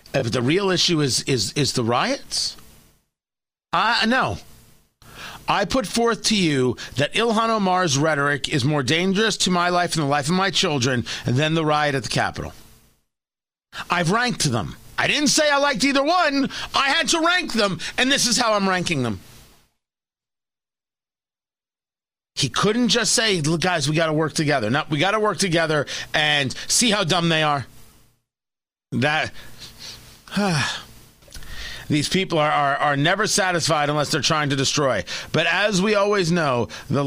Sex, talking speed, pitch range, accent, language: male, 165 wpm, 130-190 Hz, American, English